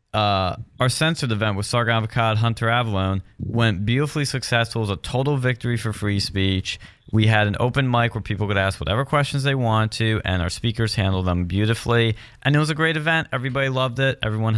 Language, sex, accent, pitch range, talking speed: English, male, American, 100-130 Hz, 205 wpm